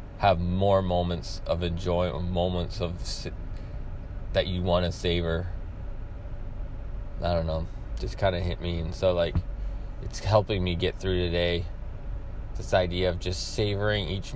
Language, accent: English, American